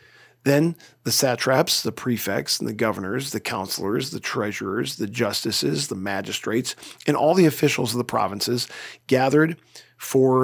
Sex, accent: male, American